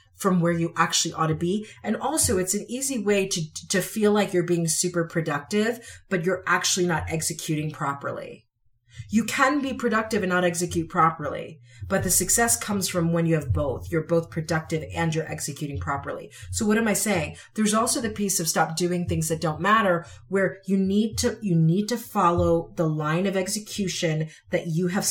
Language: English